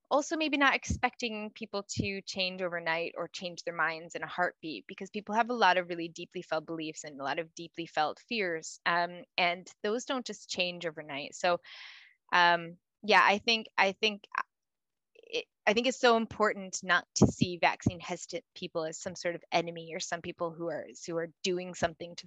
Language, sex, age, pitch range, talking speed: English, female, 20-39, 165-195 Hz, 195 wpm